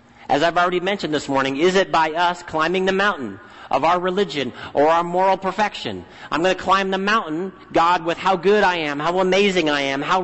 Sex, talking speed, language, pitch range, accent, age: male, 215 wpm, English, 175-210 Hz, American, 40-59